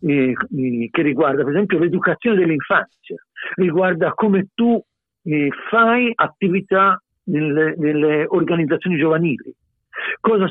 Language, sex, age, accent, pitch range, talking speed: Italian, male, 60-79, native, 165-225 Hz, 85 wpm